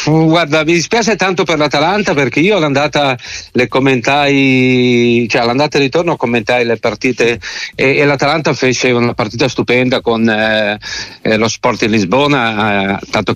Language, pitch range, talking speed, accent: Italian, 115-150 Hz, 140 wpm, native